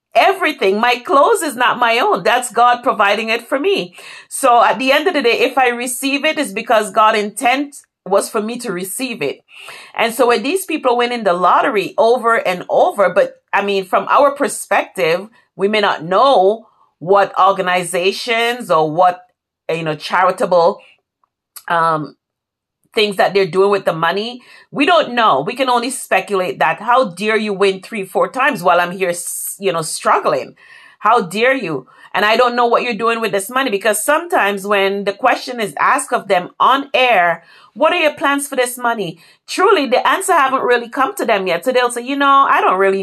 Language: English